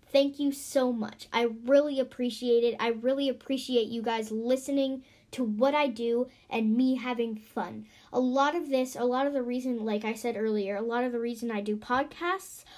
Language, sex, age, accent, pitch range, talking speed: English, female, 10-29, American, 235-280 Hz, 200 wpm